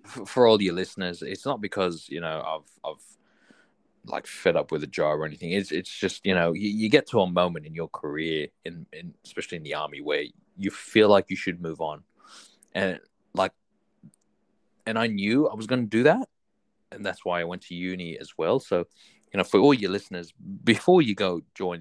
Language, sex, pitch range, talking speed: English, male, 80-100 Hz, 210 wpm